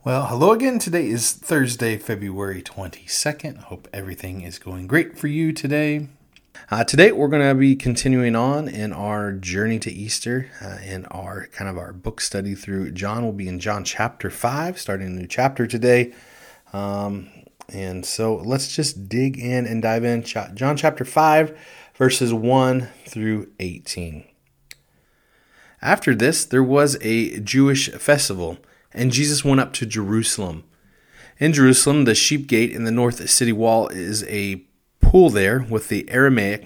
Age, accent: 30-49, American